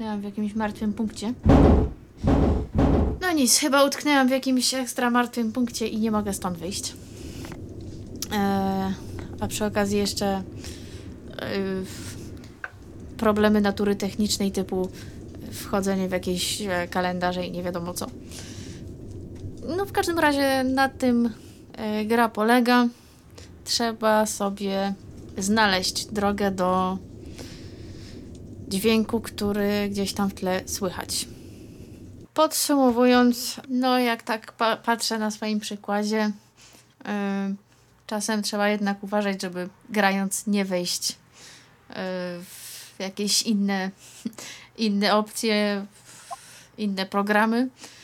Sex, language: female, Polish